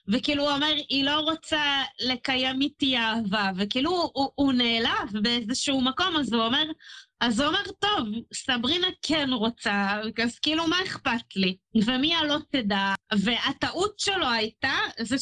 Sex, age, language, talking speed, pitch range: female, 30-49, Hebrew, 150 wpm, 240-300 Hz